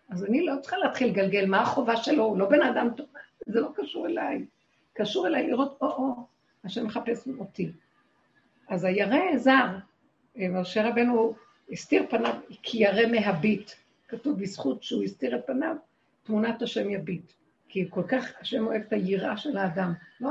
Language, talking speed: Hebrew, 160 wpm